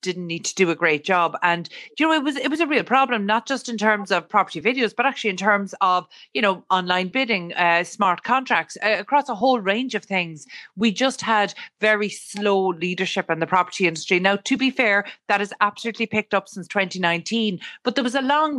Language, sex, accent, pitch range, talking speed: English, female, Irish, 175-215 Hz, 225 wpm